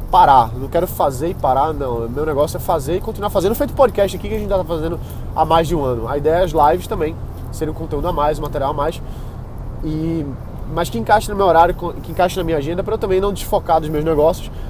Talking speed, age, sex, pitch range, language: 255 wpm, 20-39, male, 125-175 Hz, Portuguese